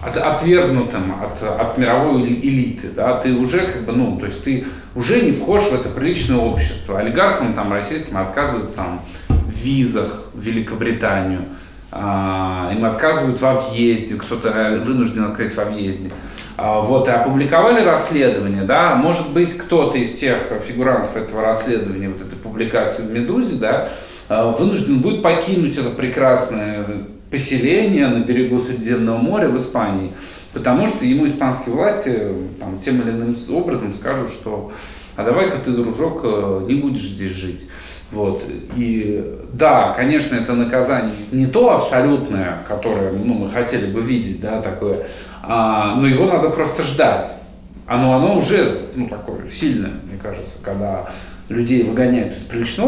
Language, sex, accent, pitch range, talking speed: Russian, male, native, 95-130 Hz, 145 wpm